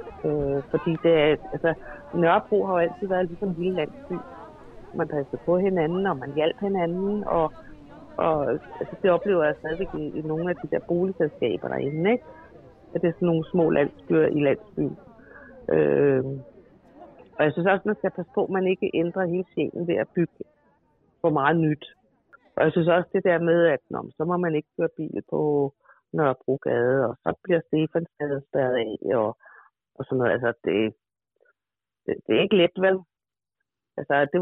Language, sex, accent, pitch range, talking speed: Danish, female, native, 155-185 Hz, 180 wpm